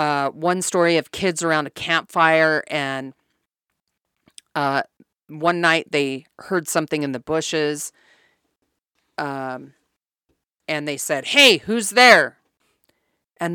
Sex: female